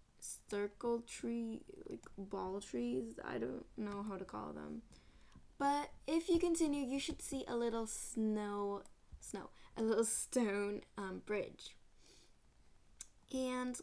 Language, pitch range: English, 195-255 Hz